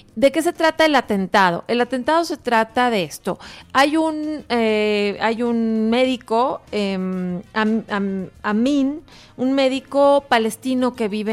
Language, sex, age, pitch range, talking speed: English, female, 30-49, 205-250 Hz, 150 wpm